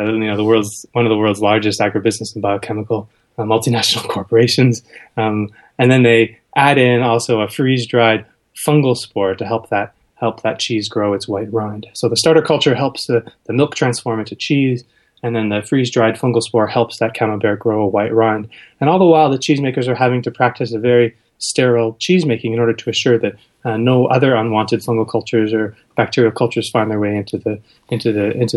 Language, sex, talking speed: English, male, 205 wpm